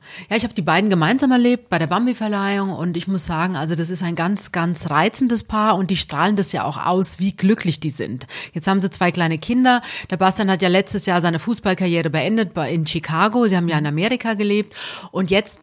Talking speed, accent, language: 225 wpm, German, German